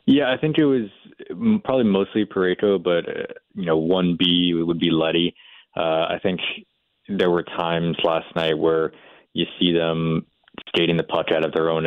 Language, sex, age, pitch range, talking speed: English, male, 20-39, 80-90 Hz, 180 wpm